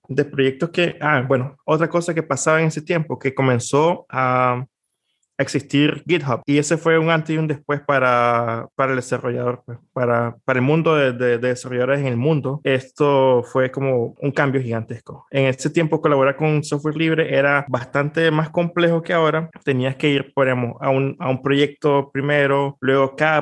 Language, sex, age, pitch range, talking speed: Spanish, male, 20-39, 130-150 Hz, 185 wpm